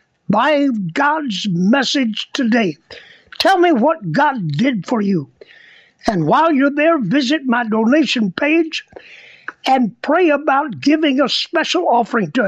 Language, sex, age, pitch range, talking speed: English, male, 60-79, 255-315 Hz, 130 wpm